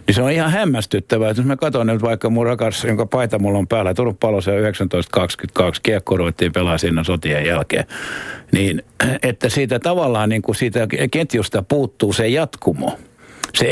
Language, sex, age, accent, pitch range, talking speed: Finnish, male, 60-79, native, 100-125 Hz, 165 wpm